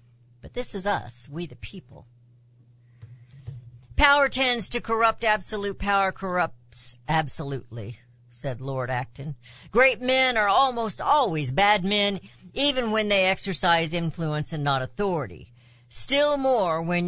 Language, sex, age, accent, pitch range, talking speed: English, female, 60-79, American, 120-205 Hz, 125 wpm